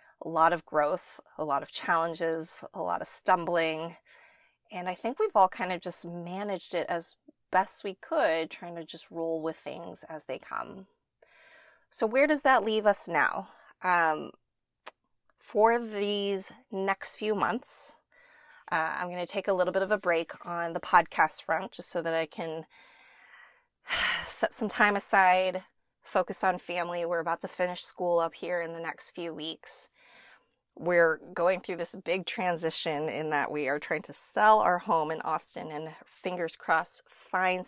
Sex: female